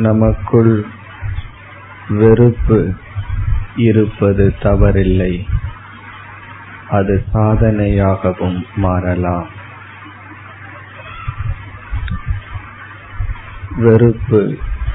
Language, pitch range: Tamil, 100-110 Hz